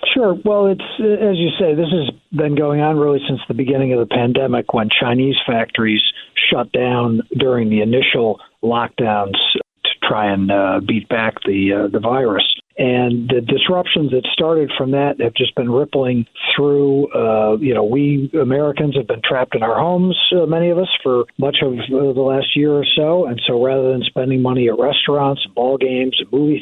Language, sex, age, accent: English, male, 50-69, American